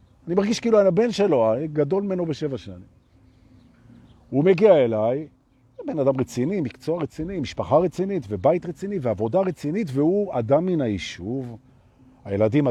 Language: Hebrew